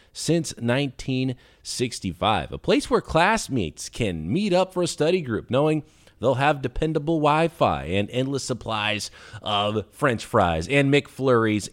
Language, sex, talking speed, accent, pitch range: English, male, 135 wpm, American, 115-180 Hz